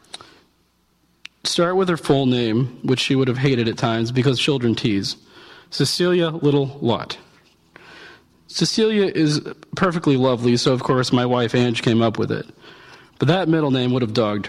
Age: 40-59